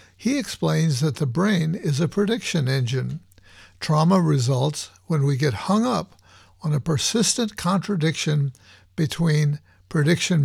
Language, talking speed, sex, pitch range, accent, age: English, 125 wpm, male, 130-175 Hz, American, 60-79